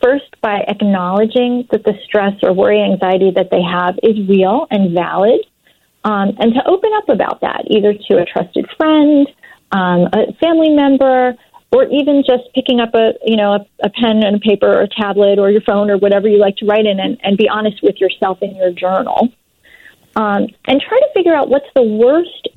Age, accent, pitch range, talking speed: 30-49, American, 200-255 Hz, 205 wpm